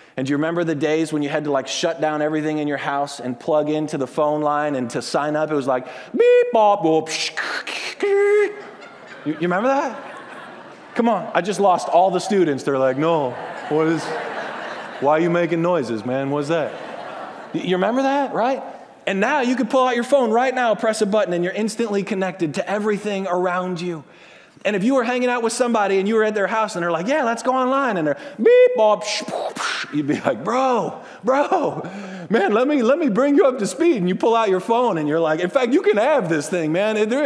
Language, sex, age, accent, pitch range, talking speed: English, male, 30-49, American, 155-240 Hz, 225 wpm